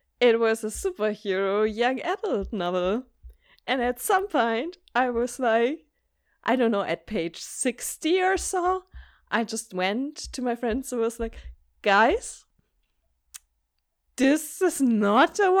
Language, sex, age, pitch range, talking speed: English, female, 20-39, 185-235 Hz, 140 wpm